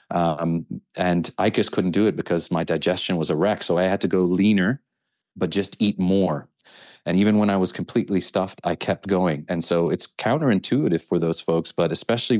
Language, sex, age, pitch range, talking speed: English, male, 30-49, 85-100 Hz, 205 wpm